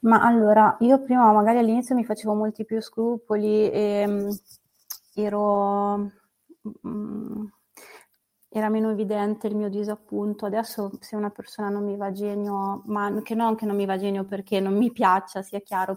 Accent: native